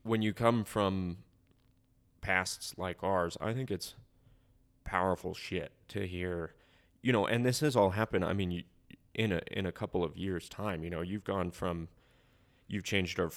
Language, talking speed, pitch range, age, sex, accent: English, 170 wpm, 85-105 Hz, 20-39, male, American